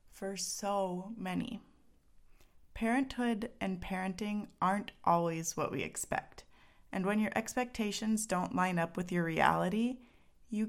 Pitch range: 165-215 Hz